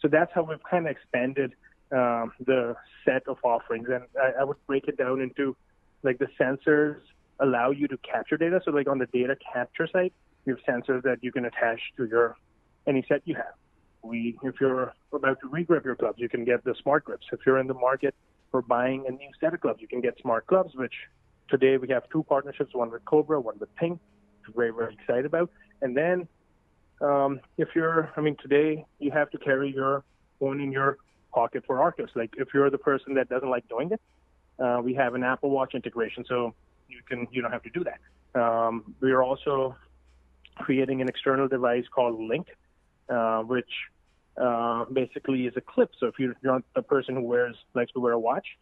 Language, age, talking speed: English, 30-49, 210 wpm